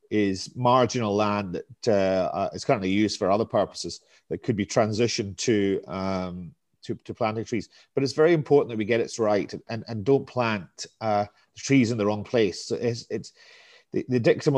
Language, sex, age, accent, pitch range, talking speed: English, male, 30-49, British, 100-120 Hz, 190 wpm